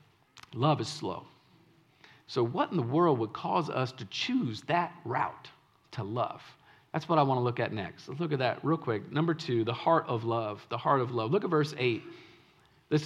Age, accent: 50-69, American